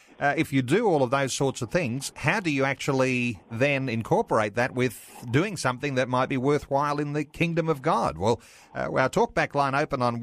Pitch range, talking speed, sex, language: 110-135 Hz, 210 wpm, male, English